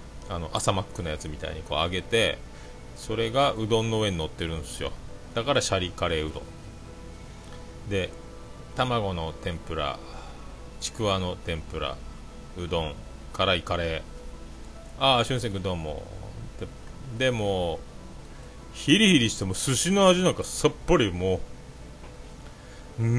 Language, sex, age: Japanese, male, 40-59